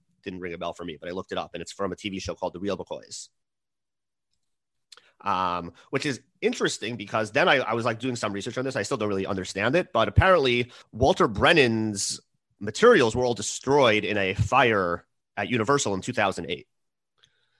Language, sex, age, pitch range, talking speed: English, male, 30-49, 100-140 Hz, 190 wpm